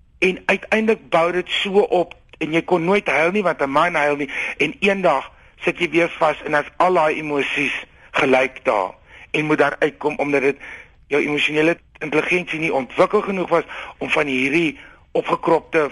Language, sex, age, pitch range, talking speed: Dutch, male, 60-79, 145-190 Hz, 180 wpm